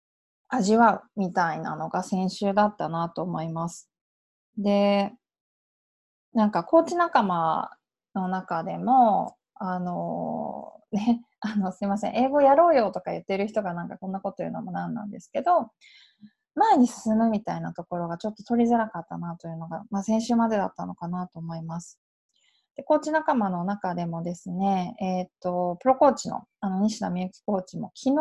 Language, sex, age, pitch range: Japanese, female, 20-39, 185-260 Hz